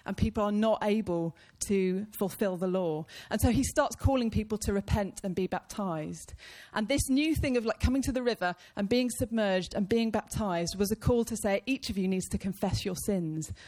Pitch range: 175-220 Hz